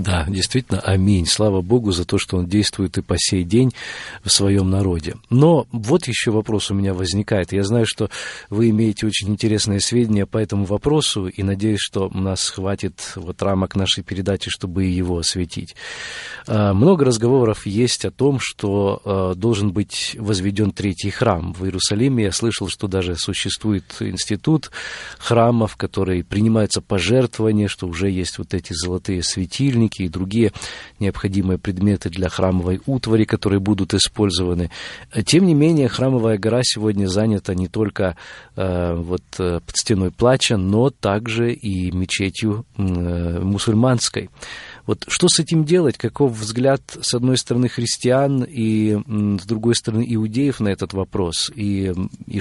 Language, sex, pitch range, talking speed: Russian, male, 95-115 Hz, 145 wpm